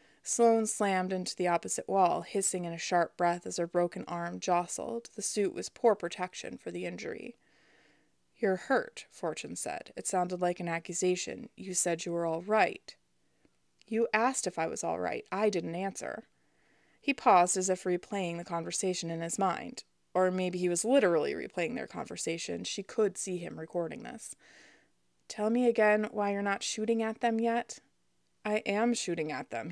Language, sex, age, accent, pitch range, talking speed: English, female, 20-39, American, 175-220 Hz, 180 wpm